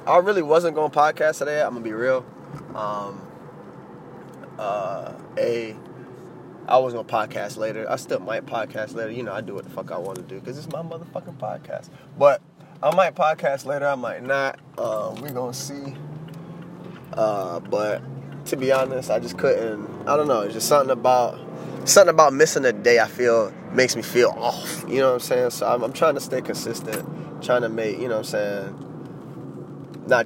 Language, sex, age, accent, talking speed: English, male, 20-39, American, 200 wpm